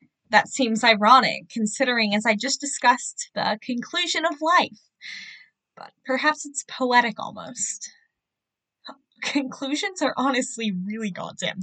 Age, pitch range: 10-29, 210-310 Hz